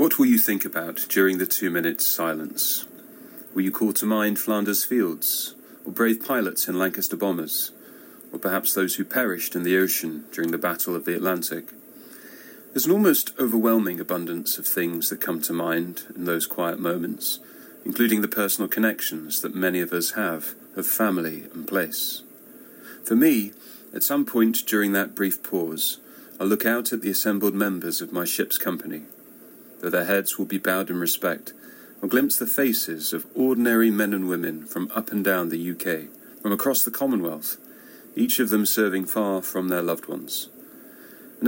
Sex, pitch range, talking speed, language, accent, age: male, 90-110 Hz, 175 wpm, English, British, 40-59